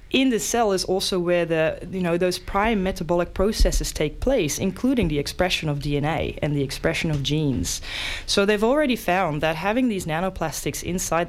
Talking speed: 180 wpm